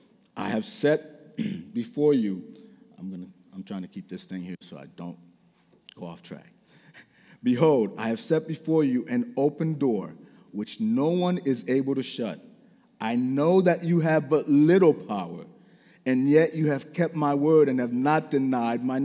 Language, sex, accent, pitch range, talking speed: English, male, American, 130-170 Hz, 175 wpm